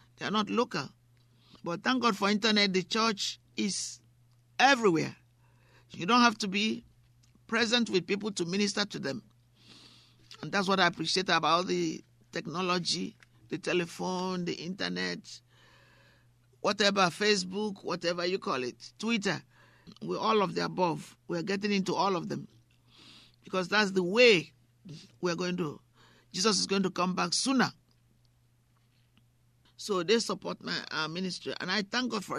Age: 50-69